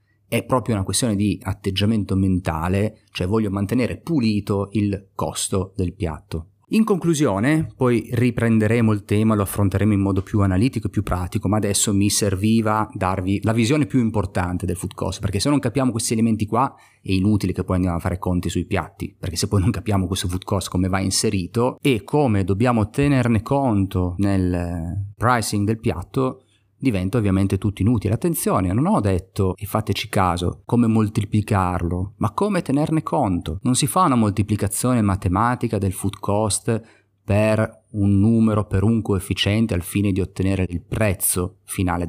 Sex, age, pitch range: male, 30-49, 95-115 Hz